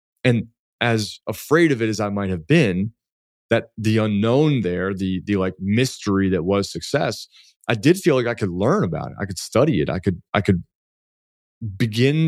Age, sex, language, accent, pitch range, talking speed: 30-49, male, English, American, 100-125 Hz, 190 wpm